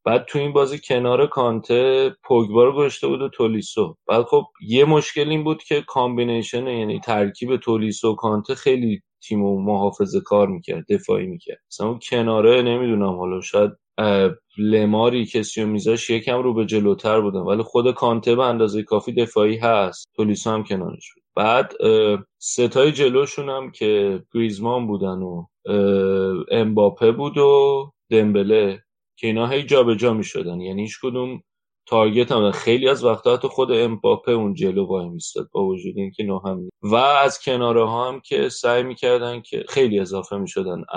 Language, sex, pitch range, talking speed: Persian, male, 105-130 Hz, 150 wpm